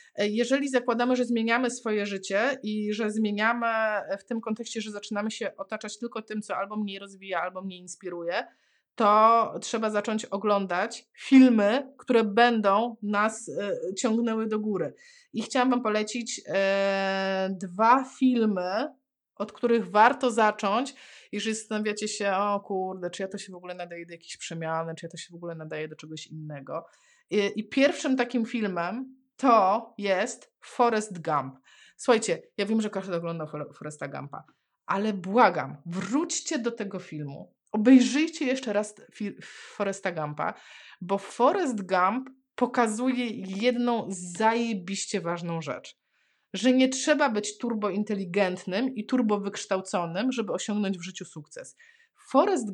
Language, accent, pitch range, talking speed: Polish, native, 195-245 Hz, 140 wpm